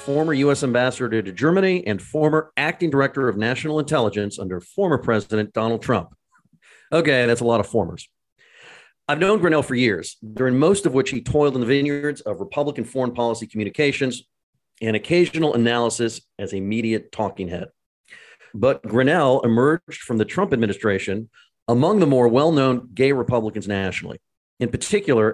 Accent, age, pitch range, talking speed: American, 40-59, 110-145 Hz, 160 wpm